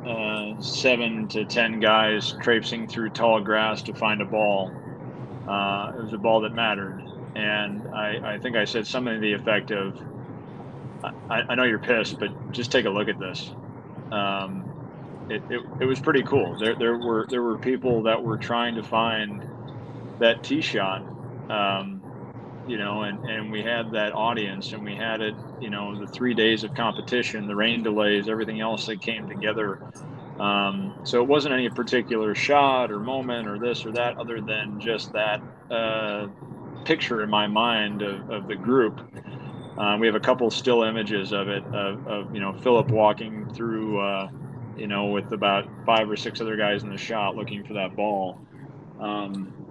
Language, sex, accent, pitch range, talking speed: English, male, American, 105-120 Hz, 185 wpm